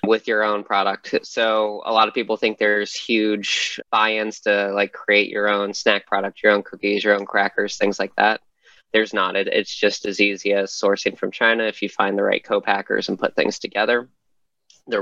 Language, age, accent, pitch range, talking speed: English, 20-39, American, 100-110 Hz, 200 wpm